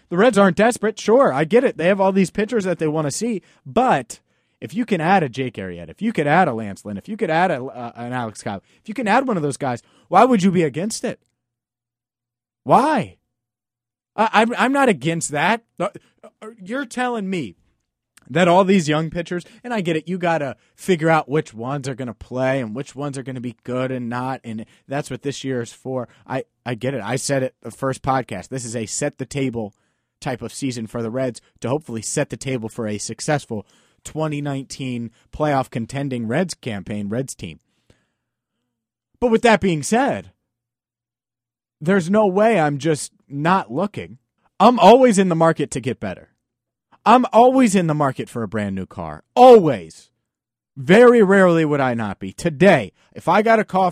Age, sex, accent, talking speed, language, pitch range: 30-49, male, American, 205 wpm, English, 120-185 Hz